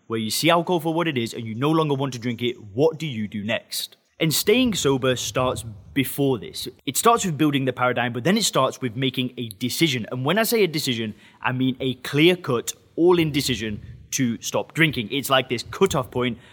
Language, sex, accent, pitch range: English, male, British, 125-160 Hz